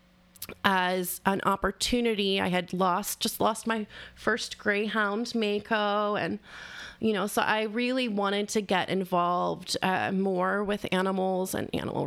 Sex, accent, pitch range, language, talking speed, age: female, American, 185-215 Hz, English, 140 wpm, 20-39